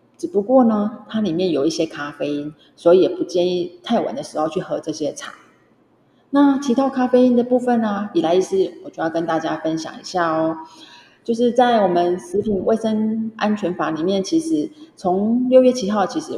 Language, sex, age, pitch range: Chinese, female, 30-49, 175-270 Hz